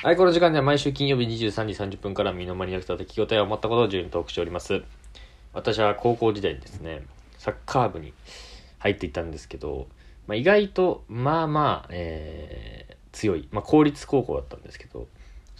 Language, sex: Japanese, male